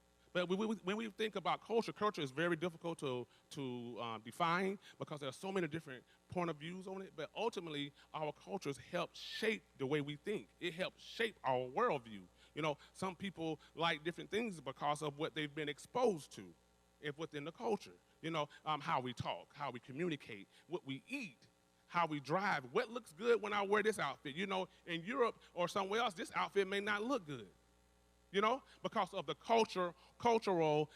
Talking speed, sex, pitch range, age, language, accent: 200 wpm, male, 145-200 Hz, 30-49, English, American